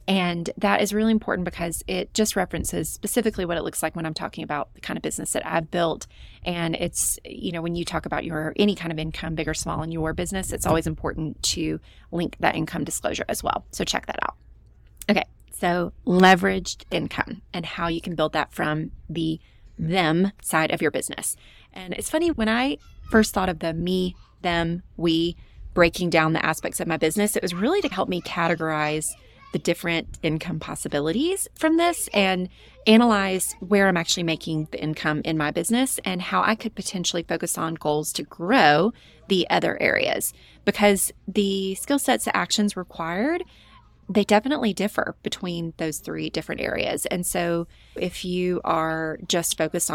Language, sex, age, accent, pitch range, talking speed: English, female, 30-49, American, 160-200 Hz, 185 wpm